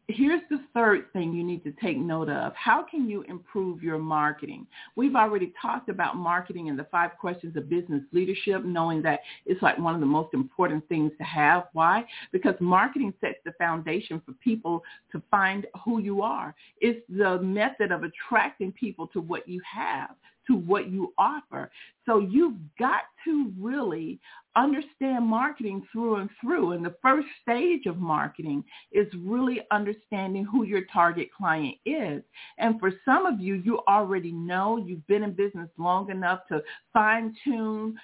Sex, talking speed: female, 170 wpm